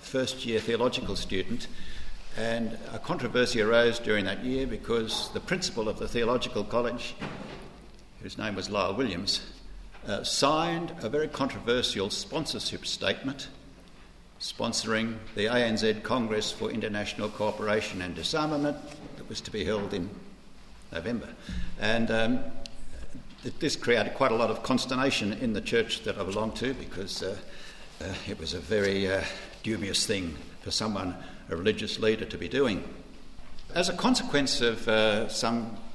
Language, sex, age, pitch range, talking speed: English, male, 60-79, 105-130 Hz, 145 wpm